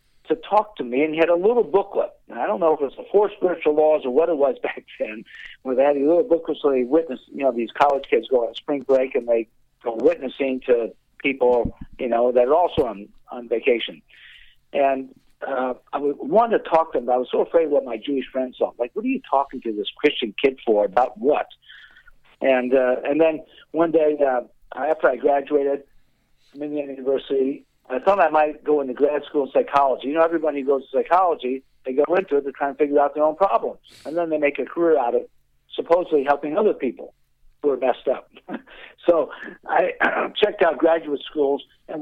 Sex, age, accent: male, 50-69, American